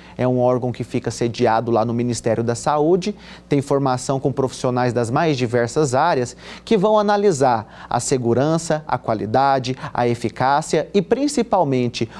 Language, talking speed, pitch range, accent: Portuguese, 150 wpm, 125-175 Hz, Brazilian